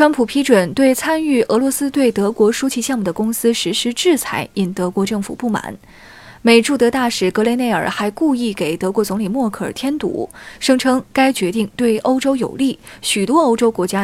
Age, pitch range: 20-39, 190-255 Hz